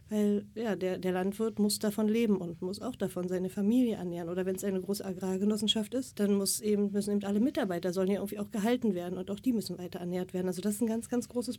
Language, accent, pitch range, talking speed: English, German, 195-225 Hz, 255 wpm